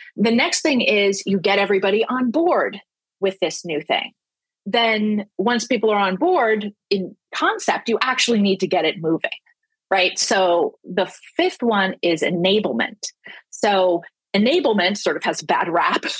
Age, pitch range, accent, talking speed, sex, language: 30-49, 190-255 Hz, American, 155 wpm, female, English